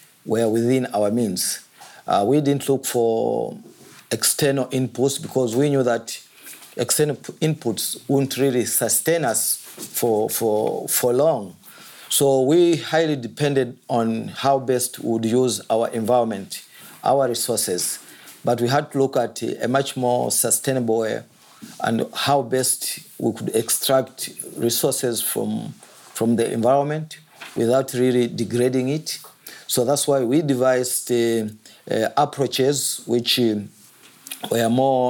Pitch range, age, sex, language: 115-135 Hz, 50-69, male, English